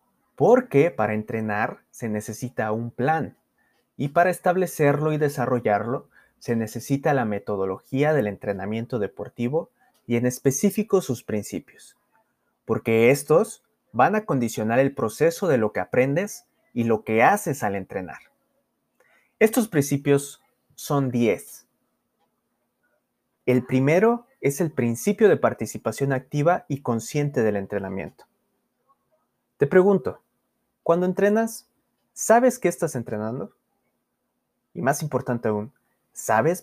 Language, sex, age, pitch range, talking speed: Spanish, male, 30-49, 110-155 Hz, 115 wpm